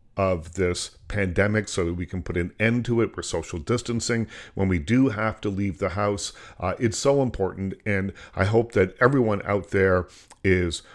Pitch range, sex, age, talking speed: 90-120 Hz, male, 40-59, 190 wpm